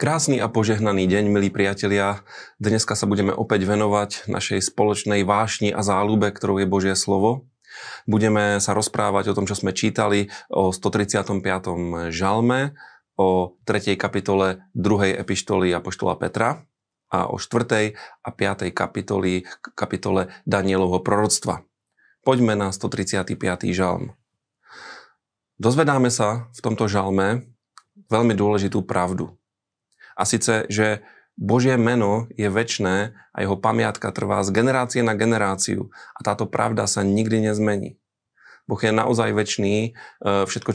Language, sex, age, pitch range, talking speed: Slovak, male, 30-49, 100-115 Hz, 125 wpm